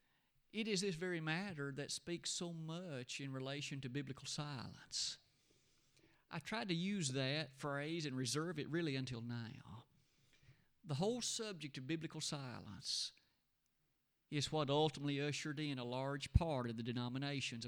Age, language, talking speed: 50-69, English, 145 wpm